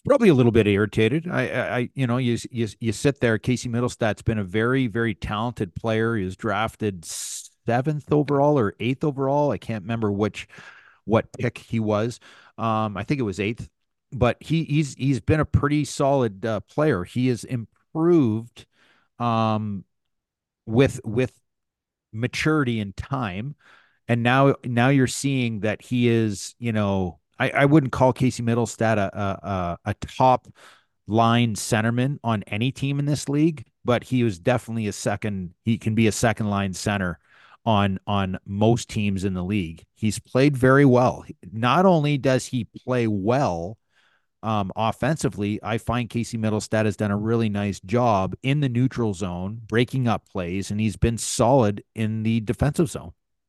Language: English